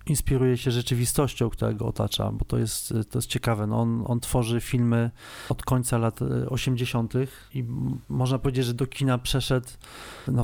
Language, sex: Polish, male